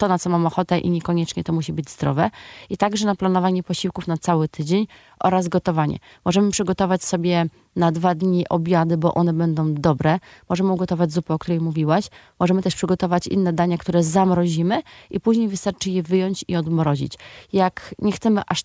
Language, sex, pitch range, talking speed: Polish, female, 170-190 Hz, 180 wpm